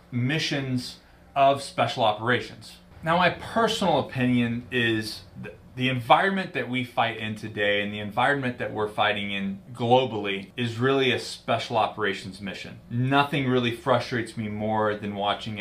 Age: 30-49